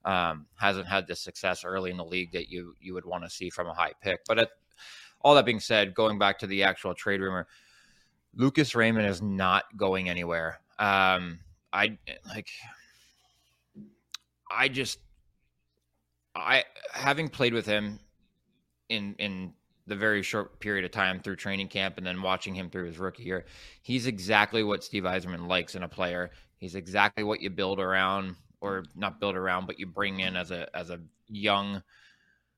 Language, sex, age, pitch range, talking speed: English, male, 20-39, 90-105 Hz, 175 wpm